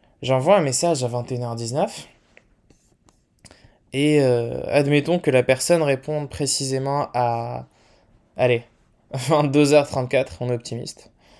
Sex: male